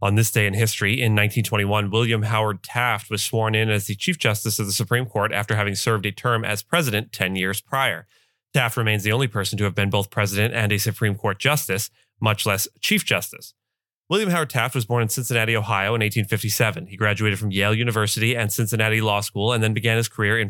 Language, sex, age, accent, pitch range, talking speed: English, male, 30-49, American, 105-125 Hz, 220 wpm